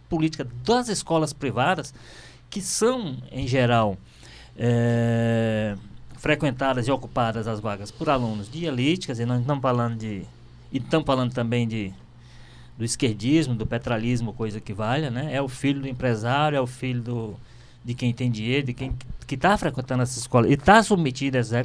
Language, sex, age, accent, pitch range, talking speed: Portuguese, male, 20-39, Brazilian, 120-155 Hz, 165 wpm